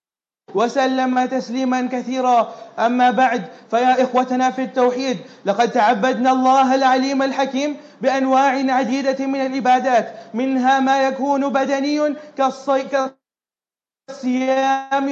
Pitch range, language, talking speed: 260-290 Hz, English, 90 wpm